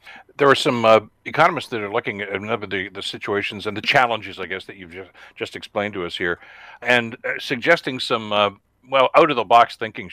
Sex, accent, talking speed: male, American, 190 wpm